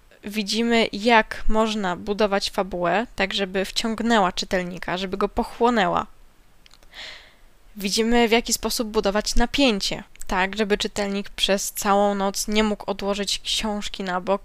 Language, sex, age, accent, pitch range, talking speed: Polish, female, 10-29, native, 200-245 Hz, 125 wpm